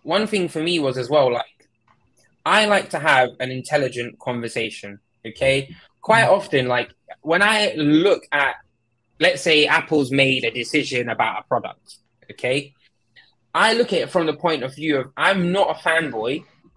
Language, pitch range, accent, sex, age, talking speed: English, 135-185 Hz, British, male, 10-29, 170 wpm